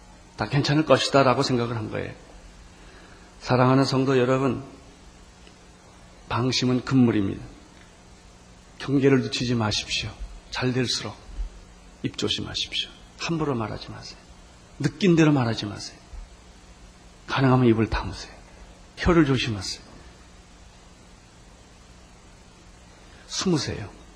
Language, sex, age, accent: Korean, male, 40-59, native